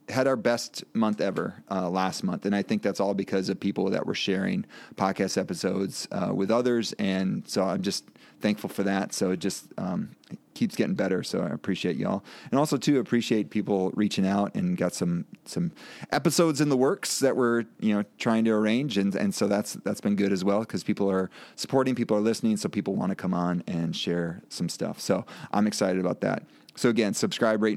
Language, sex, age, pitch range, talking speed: English, male, 30-49, 100-115 Hz, 215 wpm